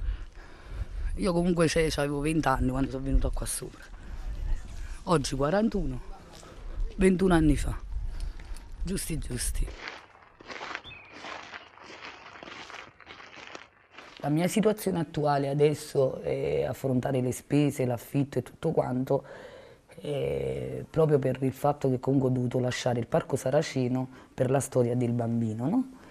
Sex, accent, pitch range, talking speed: female, native, 130-150 Hz, 110 wpm